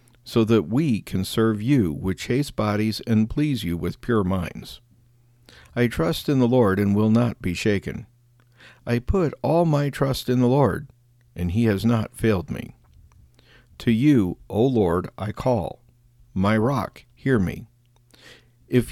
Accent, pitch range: American, 105-125 Hz